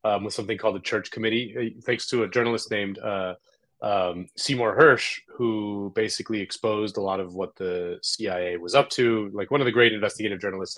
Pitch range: 110-155 Hz